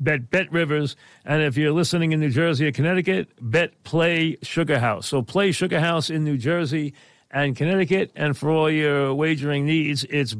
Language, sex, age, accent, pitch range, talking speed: English, male, 50-69, American, 145-185 Hz, 180 wpm